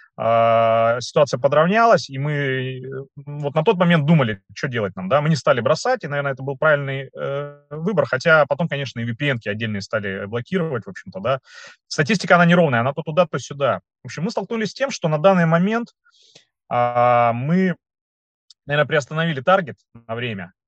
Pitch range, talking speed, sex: 115-160 Hz, 175 wpm, male